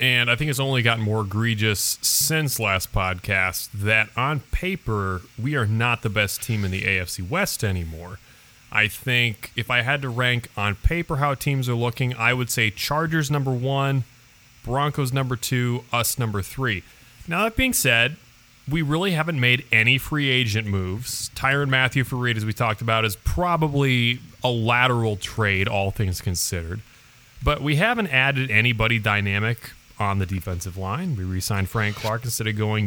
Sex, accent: male, American